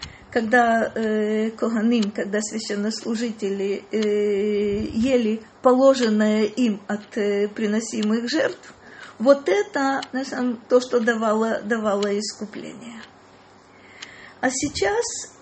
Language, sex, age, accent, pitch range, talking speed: Russian, female, 40-59, native, 210-255 Hz, 85 wpm